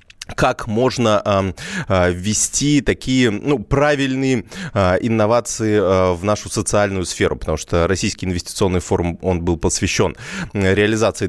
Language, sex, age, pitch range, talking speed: Russian, male, 20-39, 95-125 Hz, 105 wpm